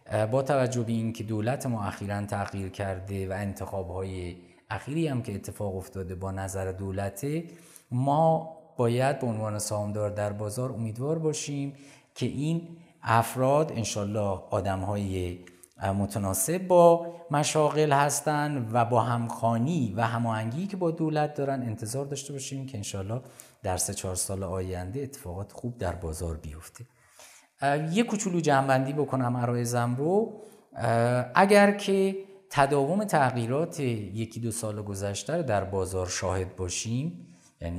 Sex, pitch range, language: male, 95-140 Hz, Persian